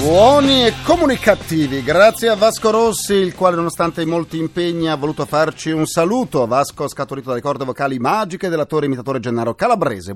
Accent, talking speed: native, 165 wpm